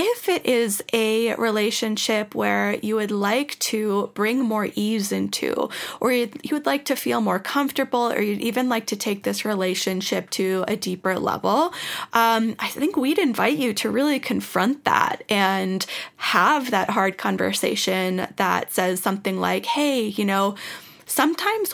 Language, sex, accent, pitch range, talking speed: English, female, American, 195-260 Hz, 160 wpm